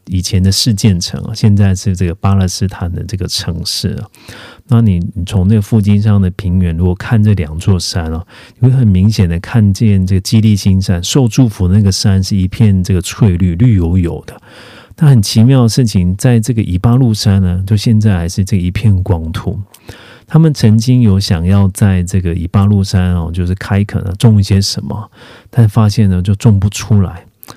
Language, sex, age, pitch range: Korean, male, 40-59, 95-115 Hz